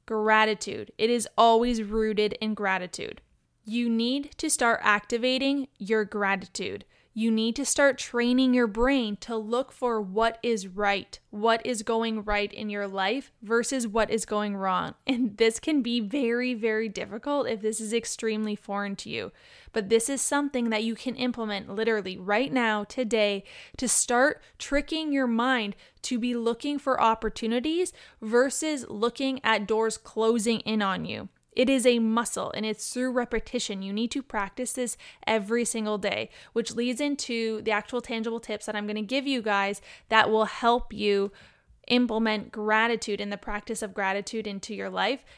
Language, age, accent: English, 10-29, American